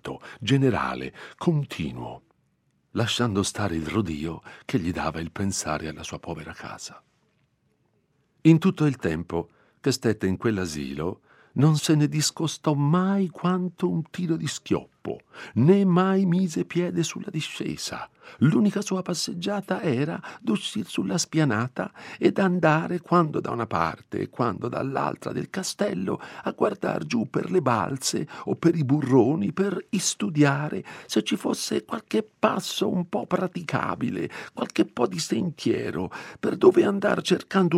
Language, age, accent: Italian, 50-69, native